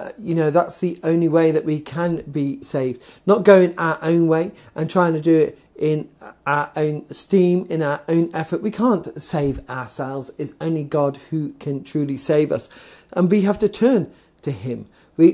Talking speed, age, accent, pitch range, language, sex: 190 wpm, 40-59, British, 145-195 Hz, English, male